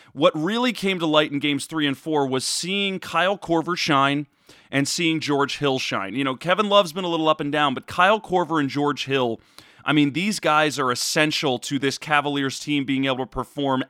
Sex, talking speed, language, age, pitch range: male, 215 wpm, English, 30-49, 130-170 Hz